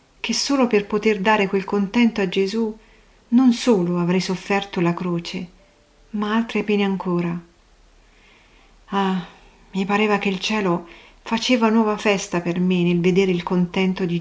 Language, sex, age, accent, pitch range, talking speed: Italian, female, 40-59, native, 175-205 Hz, 150 wpm